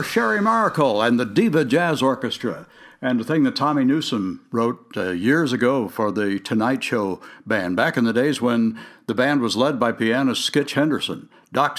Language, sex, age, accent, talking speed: English, male, 60-79, American, 185 wpm